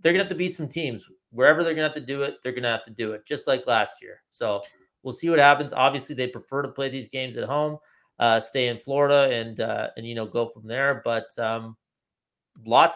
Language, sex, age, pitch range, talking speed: English, male, 30-49, 115-140 Hz, 260 wpm